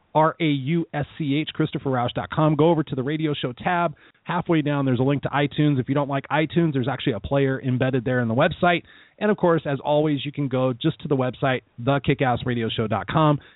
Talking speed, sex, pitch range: 190 wpm, male, 125-150 Hz